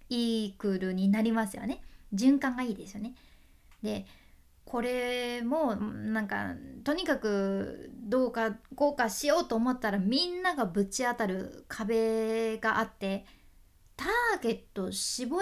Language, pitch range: Japanese, 210-305 Hz